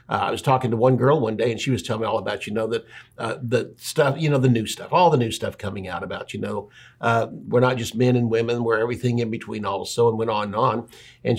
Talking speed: 285 wpm